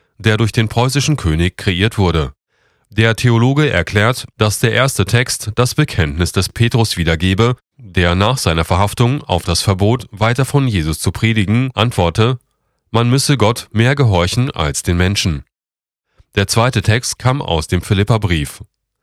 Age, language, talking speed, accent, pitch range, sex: 30-49, German, 150 wpm, German, 90-125 Hz, male